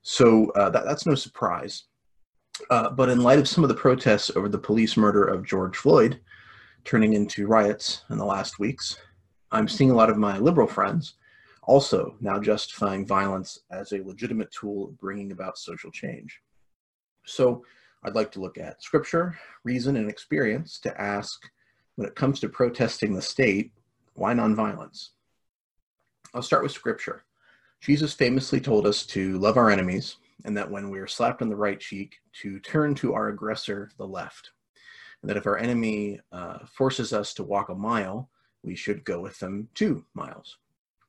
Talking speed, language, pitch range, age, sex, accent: 170 wpm, English, 100-125 Hz, 30-49, male, American